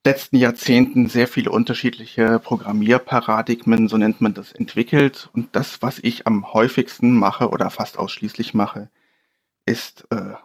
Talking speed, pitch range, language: 140 wpm, 110-130 Hz, German